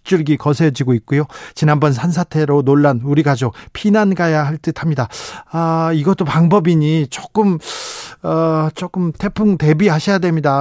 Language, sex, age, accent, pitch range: Korean, male, 40-59, native, 150-185 Hz